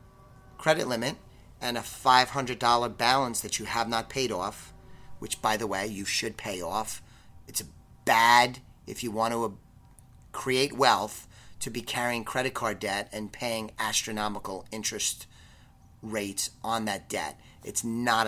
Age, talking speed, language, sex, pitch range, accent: 30-49, 145 wpm, English, male, 110-135 Hz, American